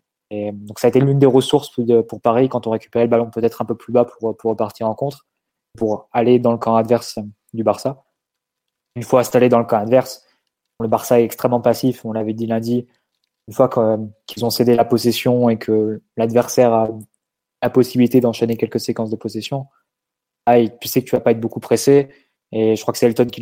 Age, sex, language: 20-39, male, French